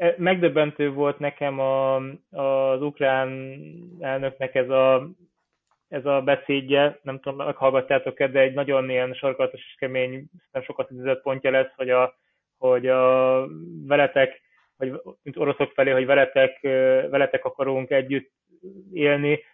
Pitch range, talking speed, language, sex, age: 130-145 Hz, 130 wpm, Hungarian, male, 20-39